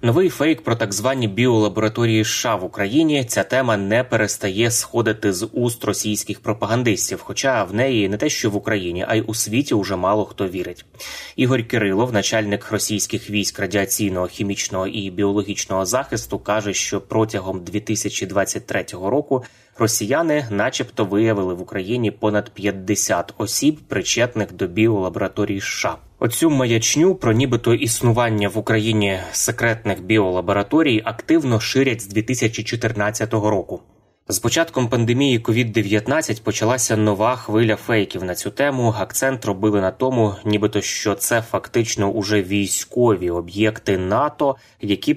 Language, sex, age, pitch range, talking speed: Ukrainian, male, 20-39, 100-120 Hz, 135 wpm